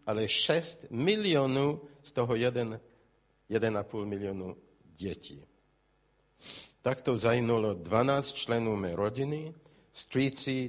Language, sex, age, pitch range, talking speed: Czech, male, 50-69, 105-145 Hz, 95 wpm